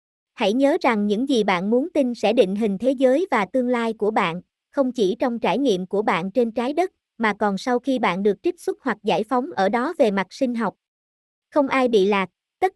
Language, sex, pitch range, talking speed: Vietnamese, male, 205-275 Hz, 235 wpm